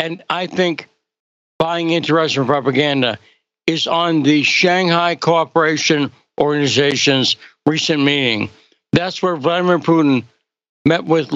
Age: 60-79